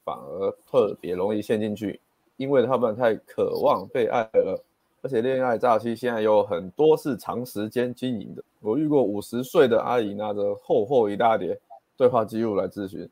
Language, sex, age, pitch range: Chinese, male, 20-39, 105-155 Hz